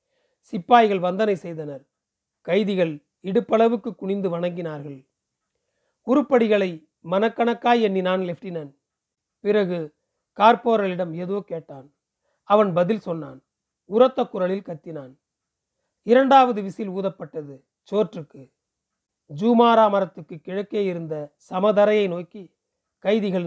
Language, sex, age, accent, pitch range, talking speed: Tamil, male, 40-59, native, 165-220 Hz, 80 wpm